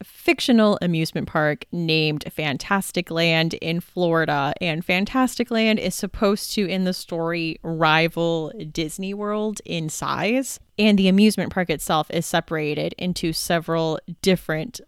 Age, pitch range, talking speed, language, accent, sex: 20-39, 160-185 Hz, 130 wpm, English, American, female